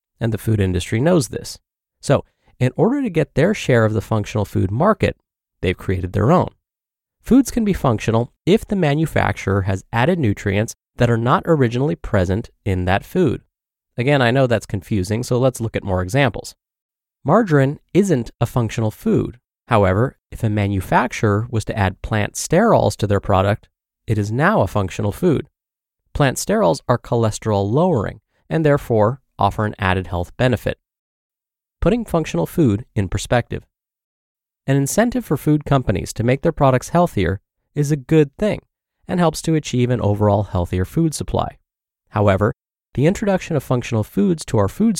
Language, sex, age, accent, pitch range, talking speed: English, male, 30-49, American, 105-145 Hz, 165 wpm